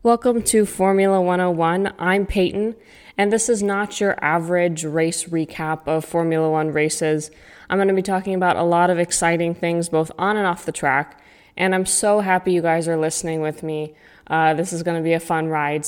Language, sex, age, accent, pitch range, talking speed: English, female, 20-39, American, 165-200 Hz, 195 wpm